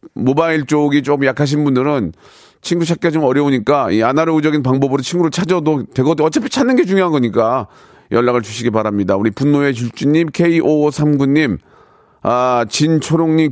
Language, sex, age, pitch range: Korean, male, 40-59, 130-170 Hz